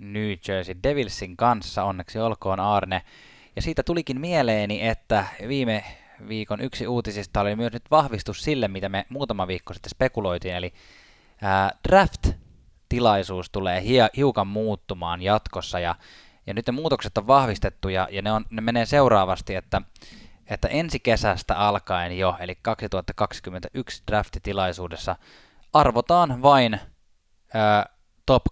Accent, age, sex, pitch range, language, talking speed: native, 20-39, male, 90-115 Hz, Finnish, 120 wpm